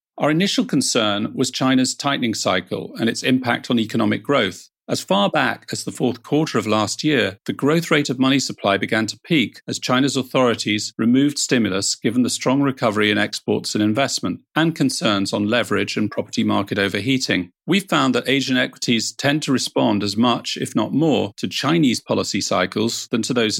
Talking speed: 185 wpm